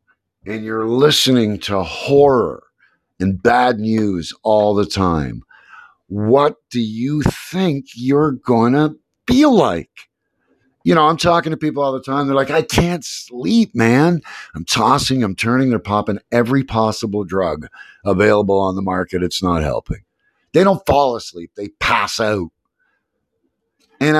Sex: male